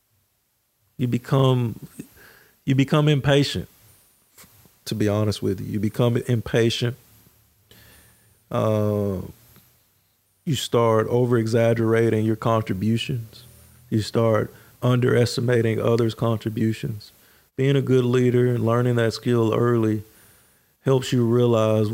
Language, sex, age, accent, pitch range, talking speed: English, male, 40-59, American, 105-120 Hz, 100 wpm